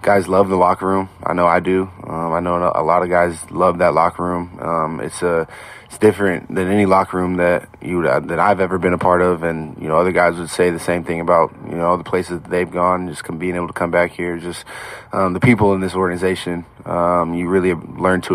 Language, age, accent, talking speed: English, 20-39, American, 240 wpm